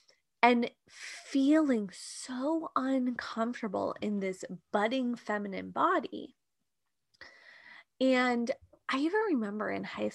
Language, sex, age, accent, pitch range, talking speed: English, female, 20-39, American, 205-305 Hz, 90 wpm